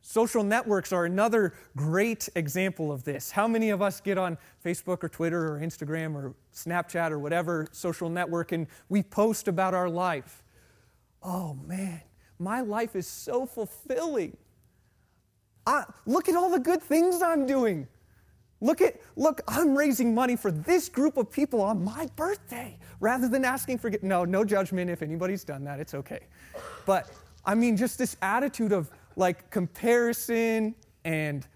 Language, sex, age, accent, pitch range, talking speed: English, male, 30-49, American, 160-220 Hz, 155 wpm